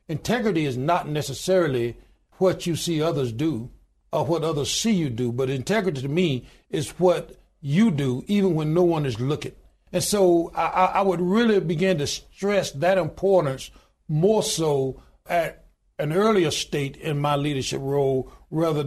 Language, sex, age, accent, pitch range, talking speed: English, male, 60-79, American, 145-185 Hz, 160 wpm